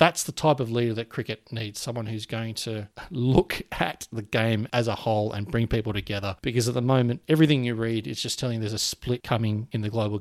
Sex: male